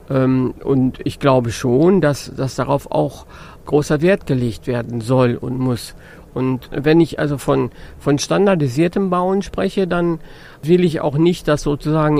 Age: 50-69